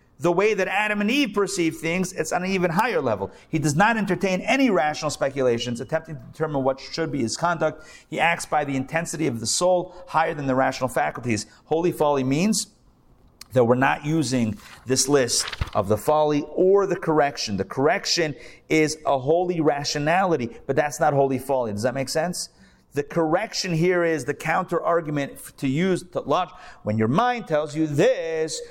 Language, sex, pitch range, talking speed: English, male, 135-180 Hz, 185 wpm